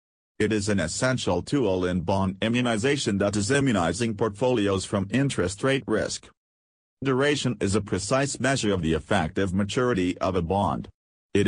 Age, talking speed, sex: 40-59, 150 wpm, male